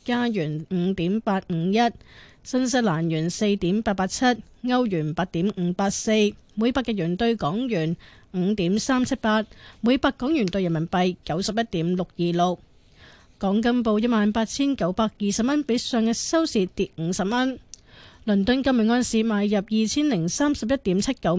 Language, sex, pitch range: Chinese, female, 185-235 Hz